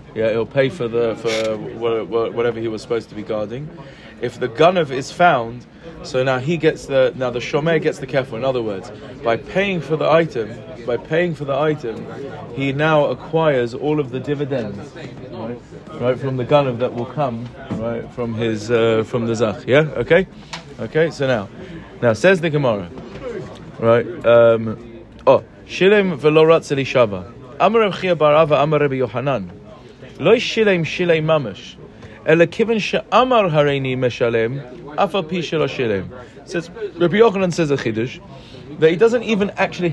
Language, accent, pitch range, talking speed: English, British, 125-165 Hz, 135 wpm